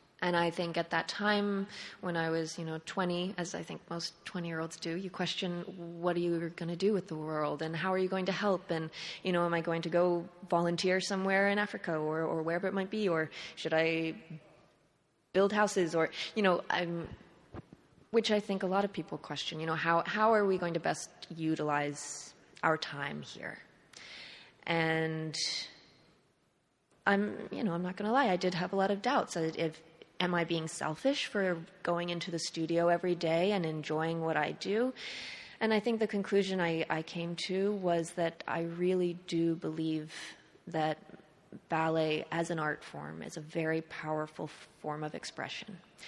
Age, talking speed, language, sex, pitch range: 20-39, 190 wpm, English, female, 160-185 Hz